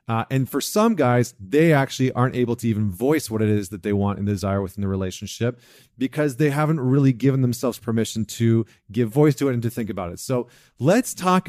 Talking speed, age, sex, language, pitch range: 225 wpm, 40-59, male, English, 105-135 Hz